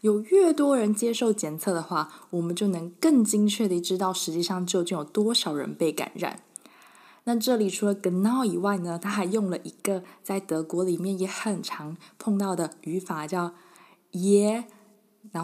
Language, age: Chinese, 20-39